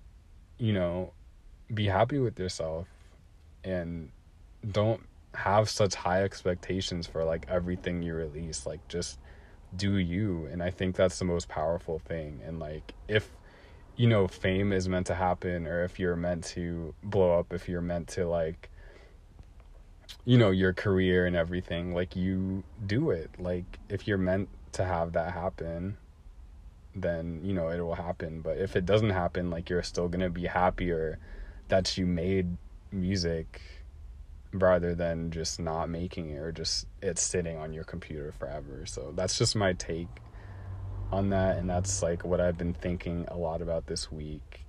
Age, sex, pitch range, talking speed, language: 30-49, male, 80-95 Hz, 165 wpm, English